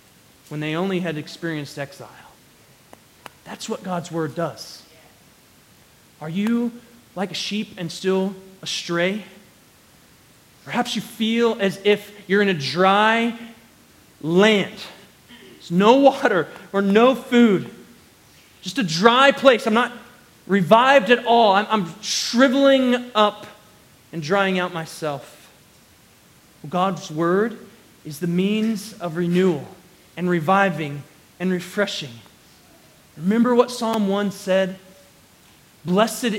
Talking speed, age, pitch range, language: 115 wpm, 30-49, 185-235 Hz, English